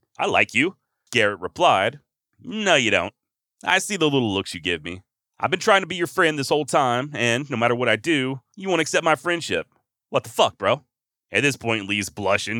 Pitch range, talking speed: 115-155 Hz, 220 wpm